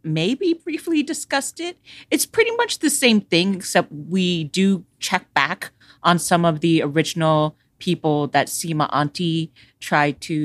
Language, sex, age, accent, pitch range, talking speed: English, female, 30-49, American, 145-190 Hz, 150 wpm